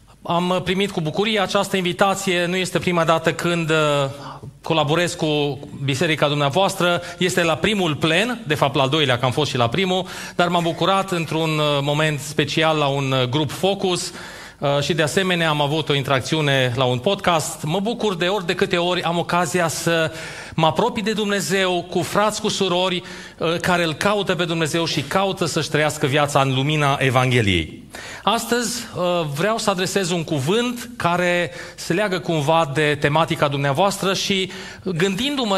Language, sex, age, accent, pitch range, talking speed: Romanian, male, 30-49, native, 150-195 Hz, 160 wpm